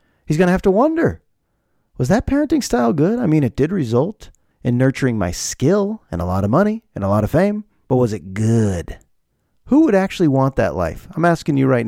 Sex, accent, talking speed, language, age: male, American, 220 wpm, English, 30-49